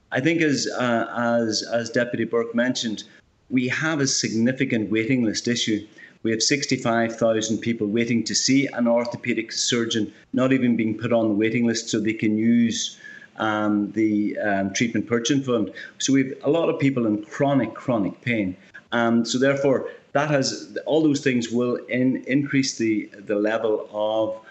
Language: English